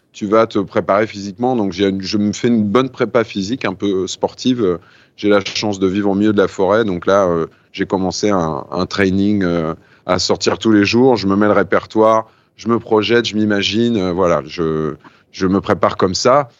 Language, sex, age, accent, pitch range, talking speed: French, male, 30-49, French, 100-120 Hz, 215 wpm